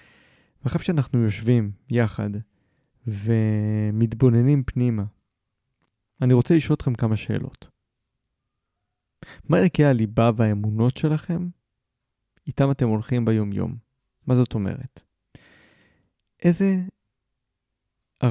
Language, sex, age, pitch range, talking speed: Hebrew, male, 30-49, 110-140 Hz, 80 wpm